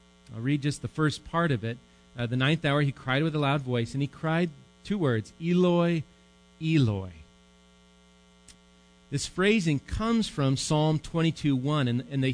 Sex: male